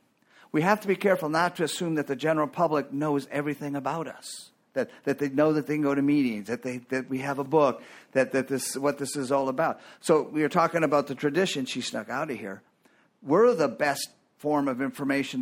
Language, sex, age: English, male, 50-69